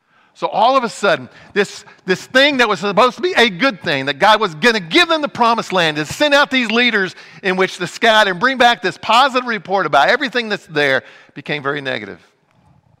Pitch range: 150-235 Hz